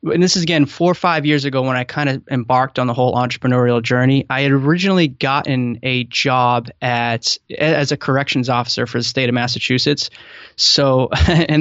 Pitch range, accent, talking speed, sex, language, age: 130-155 Hz, American, 190 wpm, male, English, 20-39